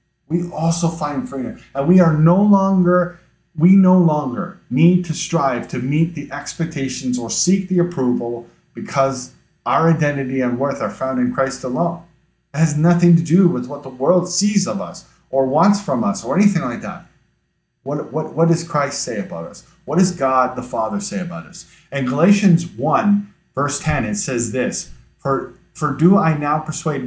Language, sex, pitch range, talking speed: English, male, 135-185 Hz, 185 wpm